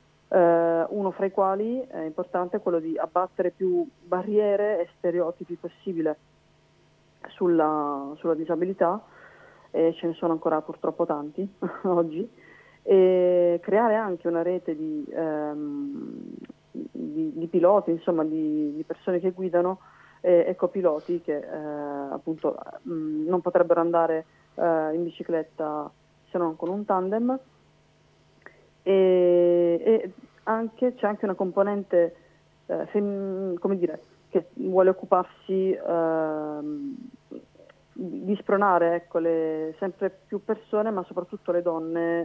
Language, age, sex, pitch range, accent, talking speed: Italian, 30-49, female, 165-195 Hz, native, 120 wpm